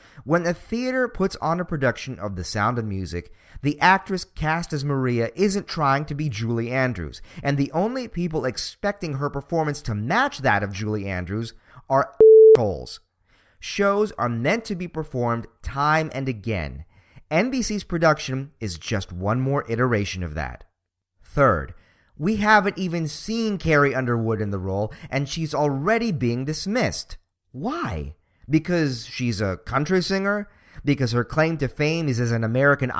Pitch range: 115-180 Hz